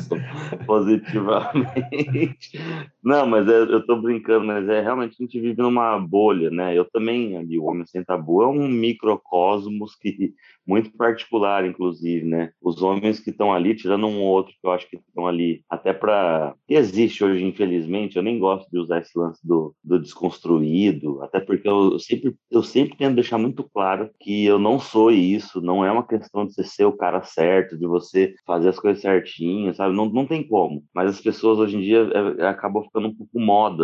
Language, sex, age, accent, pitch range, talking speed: Portuguese, male, 30-49, Brazilian, 90-115 Hz, 195 wpm